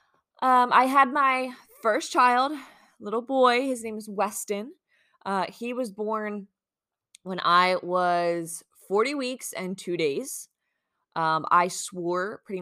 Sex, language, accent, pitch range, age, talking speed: female, English, American, 160-215 Hz, 20-39, 135 wpm